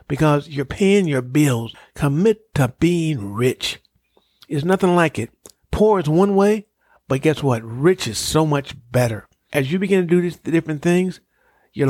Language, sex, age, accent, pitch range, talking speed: English, male, 50-69, American, 135-180 Hz, 170 wpm